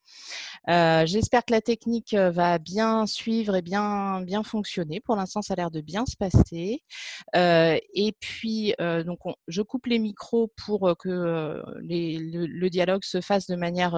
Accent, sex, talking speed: French, female, 175 wpm